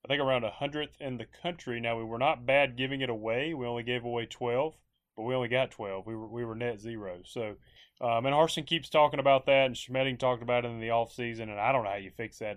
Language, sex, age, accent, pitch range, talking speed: English, male, 30-49, American, 115-140 Hz, 265 wpm